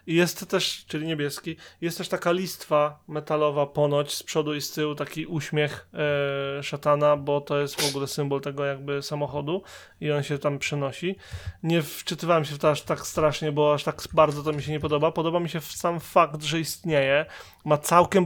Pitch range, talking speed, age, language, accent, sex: 145-190 Hz, 190 wpm, 20-39, Polish, native, male